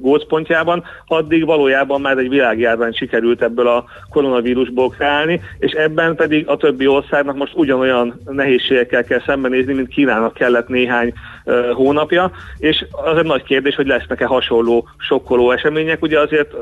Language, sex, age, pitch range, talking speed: Hungarian, male, 40-59, 130-145 Hz, 145 wpm